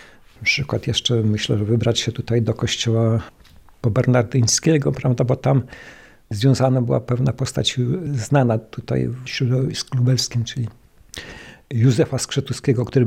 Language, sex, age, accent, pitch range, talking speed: Polish, male, 50-69, native, 115-135 Hz, 125 wpm